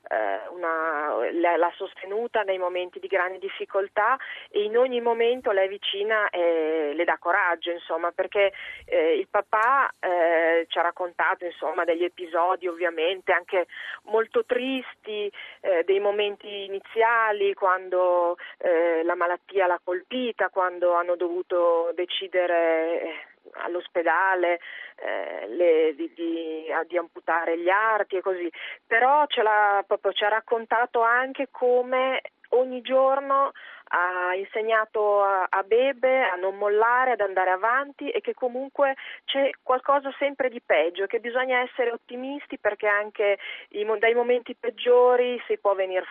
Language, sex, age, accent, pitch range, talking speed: Italian, female, 30-49, native, 180-245 Hz, 135 wpm